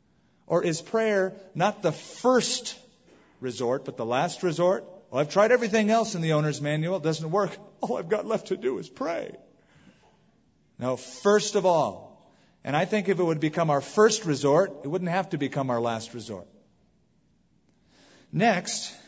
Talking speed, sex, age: 170 wpm, male, 40-59